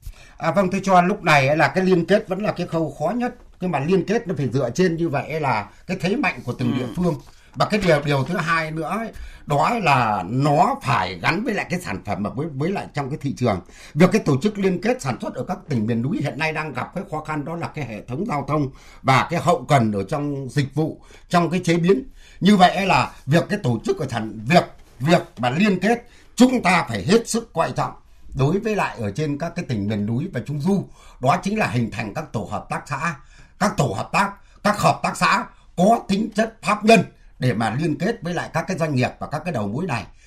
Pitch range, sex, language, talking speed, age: 135-195 Hz, male, Vietnamese, 255 wpm, 60-79